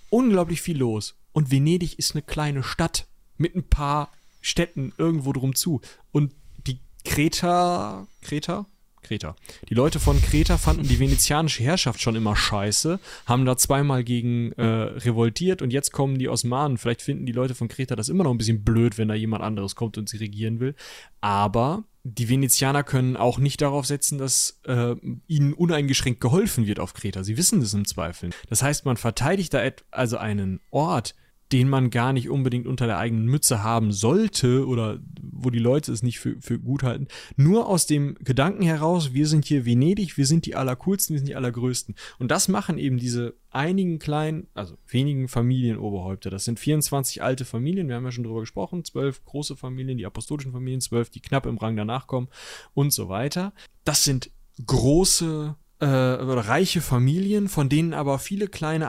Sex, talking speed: male, 180 wpm